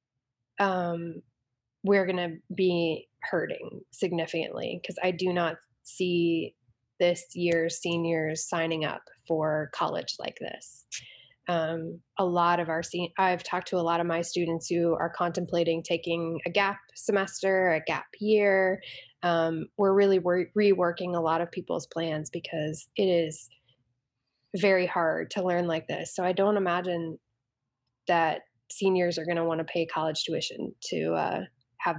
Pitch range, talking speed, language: 165-200 Hz, 145 wpm, English